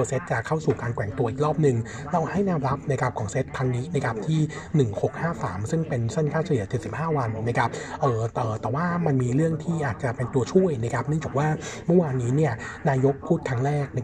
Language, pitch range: Thai, 120-150 Hz